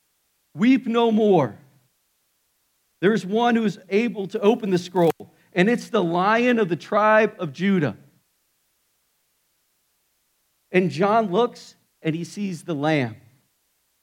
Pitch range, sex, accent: 165-220 Hz, male, American